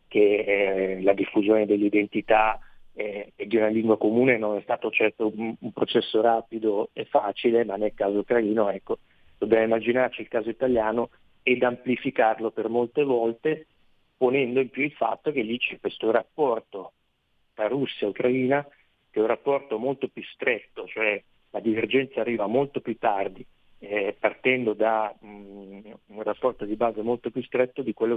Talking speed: 160 wpm